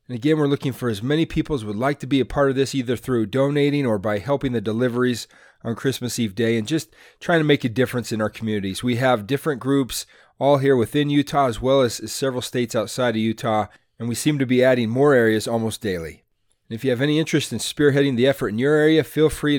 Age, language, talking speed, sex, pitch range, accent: 30-49, English, 245 wpm, male, 115-145 Hz, American